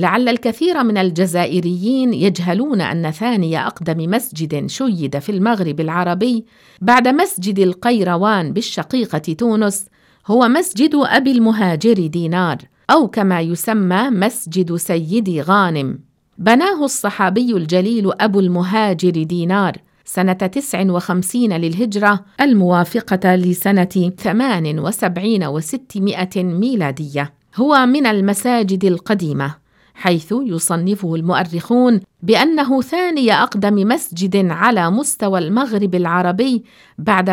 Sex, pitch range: female, 175-235 Hz